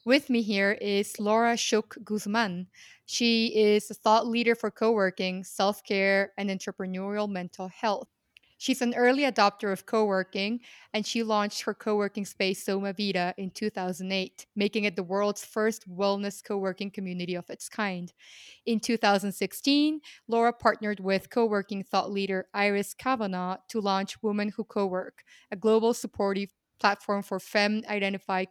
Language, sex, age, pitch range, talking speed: English, female, 20-39, 195-225 Hz, 145 wpm